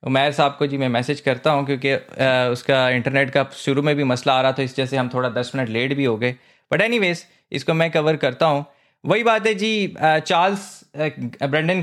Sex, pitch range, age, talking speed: male, 135-175 Hz, 20-39, 185 wpm